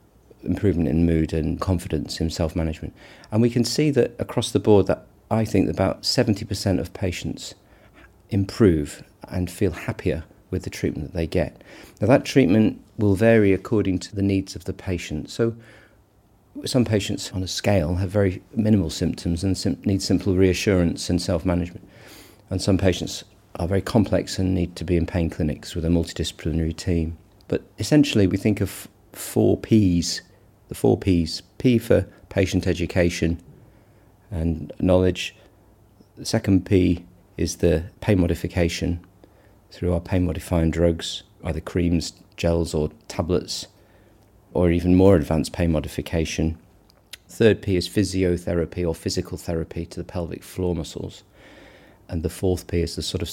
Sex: male